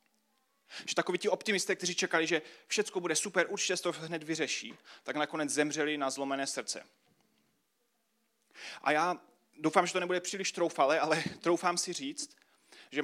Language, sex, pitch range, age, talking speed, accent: Czech, male, 140-175 Hz, 30-49, 155 wpm, native